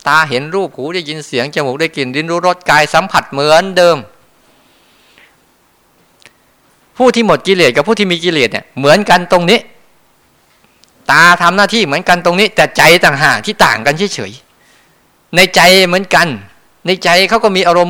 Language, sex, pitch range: Thai, male, 145-190 Hz